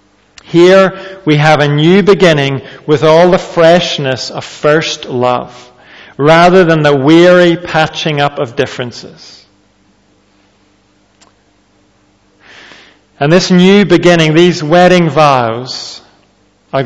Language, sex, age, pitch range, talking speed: English, male, 40-59, 100-165 Hz, 105 wpm